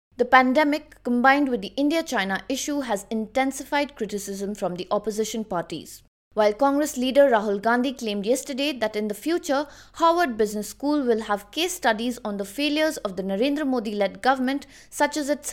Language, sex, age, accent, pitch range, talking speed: English, female, 20-39, Indian, 205-285 Hz, 165 wpm